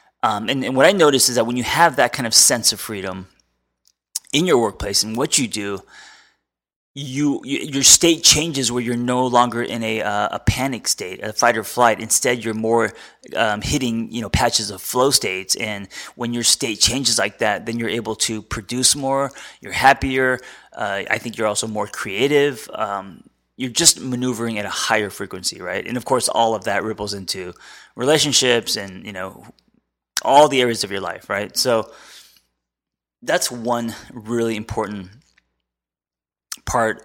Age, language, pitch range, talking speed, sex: 20-39, English, 100-125 Hz, 175 wpm, male